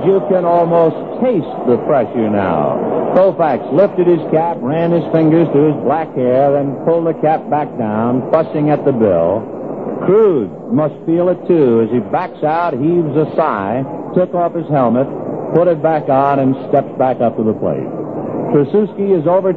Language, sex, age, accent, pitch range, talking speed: English, male, 60-79, American, 140-180 Hz, 180 wpm